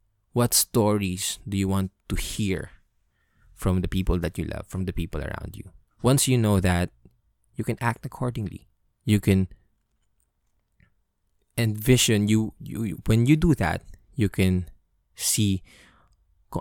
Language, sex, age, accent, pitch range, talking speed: English, male, 20-39, Filipino, 90-105 Hz, 140 wpm